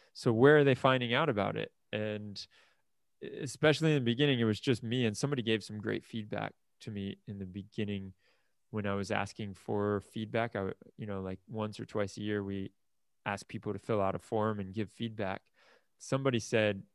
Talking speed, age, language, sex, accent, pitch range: 200 wpm, 20-39, English, male, American, 100-120 Hz